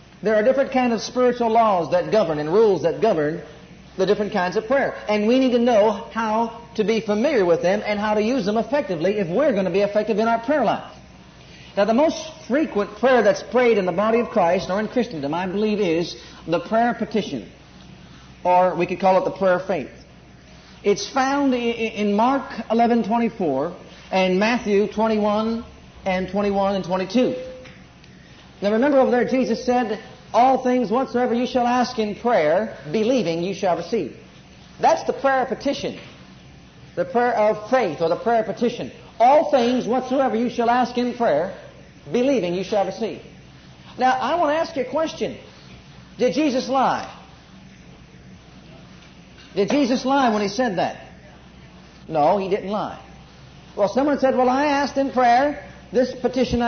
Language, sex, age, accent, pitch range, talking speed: English, male, 50-69, American, 200-255 Hz, 175 wpm